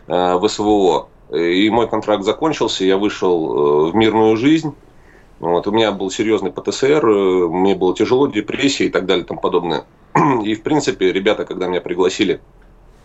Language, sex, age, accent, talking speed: Russian, male, 30-49, native, 155 wpm